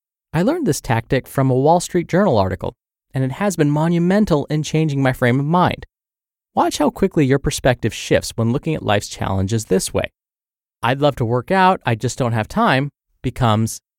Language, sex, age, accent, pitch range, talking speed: English, male, 30-49, American, 115-175 Hz, 195 wpm